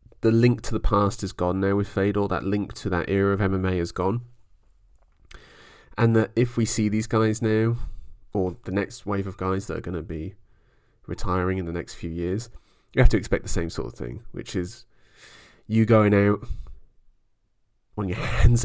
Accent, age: British, 30-49